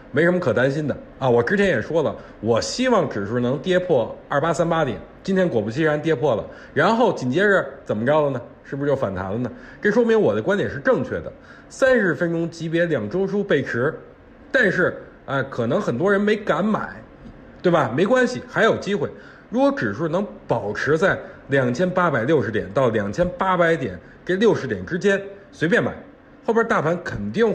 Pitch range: 135-200 Hz